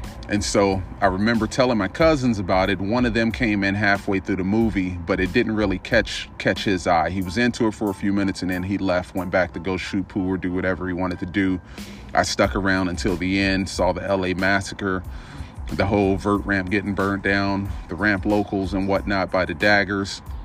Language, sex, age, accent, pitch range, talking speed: English, male, 30-49, American, 90-100 Hz, 225 wpm